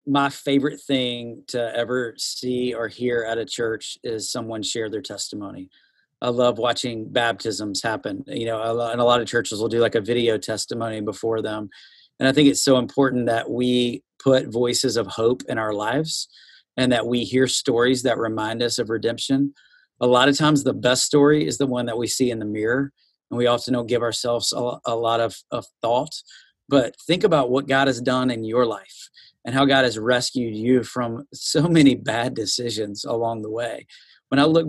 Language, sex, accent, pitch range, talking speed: English, male, American, 120-140 Hz, 200 wpm